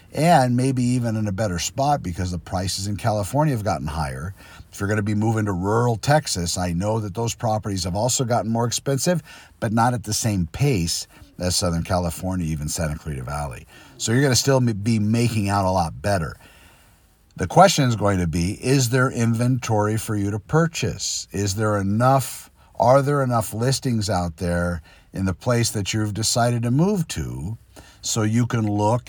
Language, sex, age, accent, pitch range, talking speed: English, male, 50-69, American, 90-120 Hz, 190 wpm